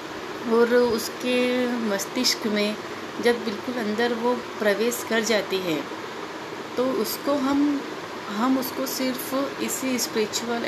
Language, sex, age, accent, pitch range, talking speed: Hindi, female, 30-49, native, 195-240 Hz, 110 wpm